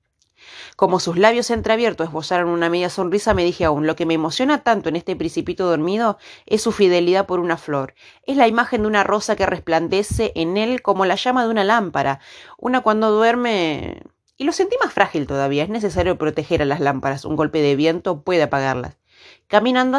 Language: Spanish